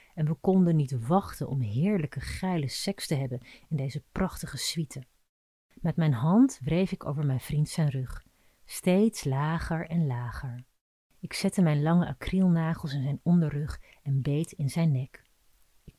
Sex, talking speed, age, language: female, 160 wpm, 30-49, Dutch